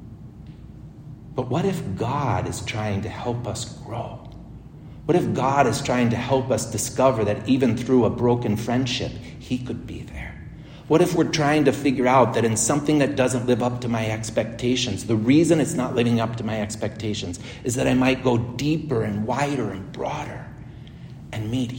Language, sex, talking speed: English, male, 185 wpm